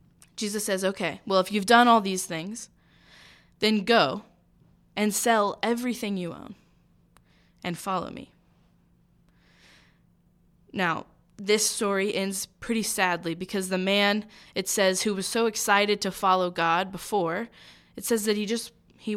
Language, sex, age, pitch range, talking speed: English, female, 10-29, 185-230 Hz, 140 wpm